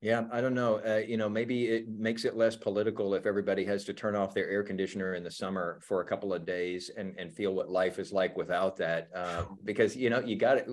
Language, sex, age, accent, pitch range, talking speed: English, male, 40-59, American, 95-110 Hz, 250 wpm